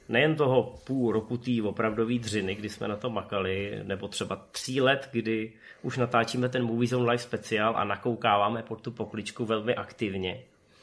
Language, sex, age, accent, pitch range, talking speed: Czech, male, 30-49, native, 110-135 Hz, 170 wpm